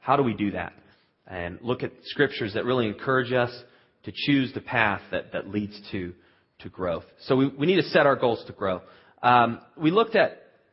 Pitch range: 105-135 Hz